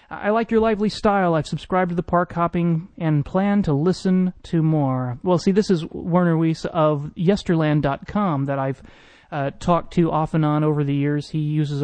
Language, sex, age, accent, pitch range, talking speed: English, male, 30-49, American, 140-180 Hz, 195 wpm